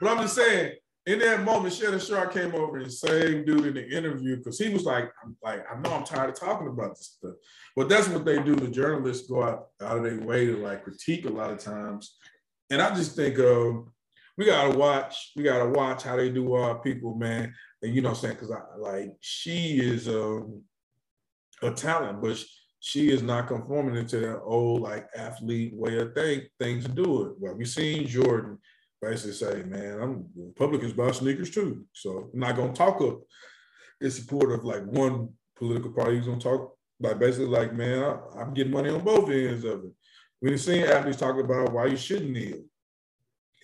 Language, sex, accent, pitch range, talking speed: English, male, American, 115-145 Hz, 210 wpm